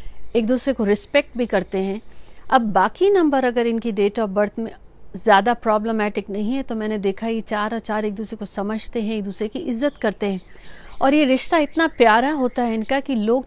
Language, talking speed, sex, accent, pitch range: Hindi, 215 wpm, female, native, 210-260 Hz